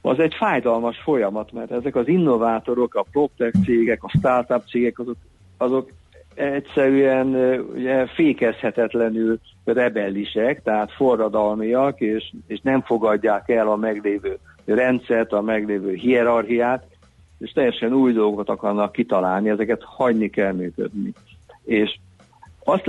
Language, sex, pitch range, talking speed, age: Hungarian, male, 105-125 Hz, 120 wpm, 60-79